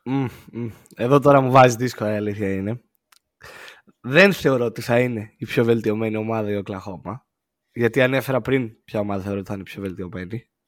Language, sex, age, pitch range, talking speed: Greek, male, 20-39, 115-150 Hz, 185 wpm